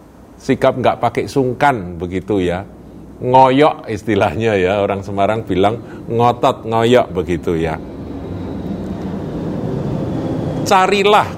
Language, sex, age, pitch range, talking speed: Indonesian, male, 50-69, 95-130 Hz, 90 wpm